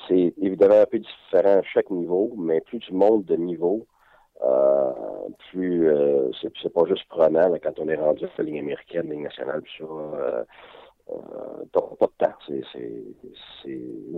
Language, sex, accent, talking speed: French, male, French, 190 wpm